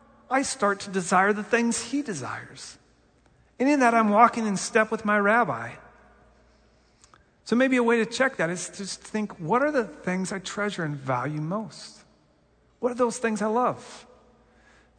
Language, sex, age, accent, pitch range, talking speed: English, male, 40-59, American, 170-220 Hz, 180 wpm